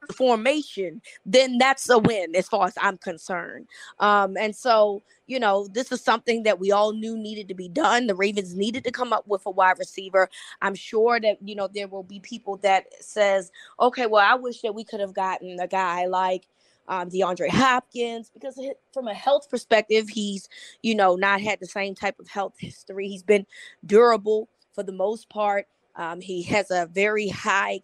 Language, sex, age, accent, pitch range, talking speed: English, female, 20-39, American, 195-235 Hz, 195 wpm